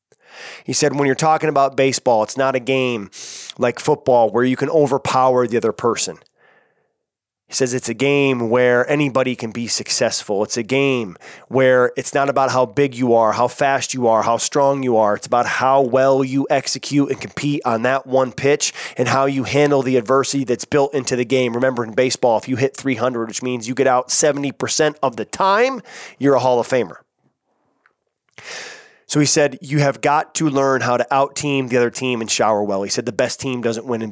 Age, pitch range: 20-39, 115-135 Hz